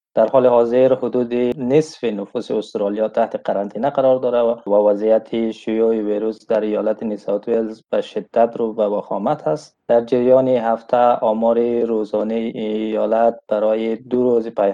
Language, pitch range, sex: Persian, 110-125 Hz, male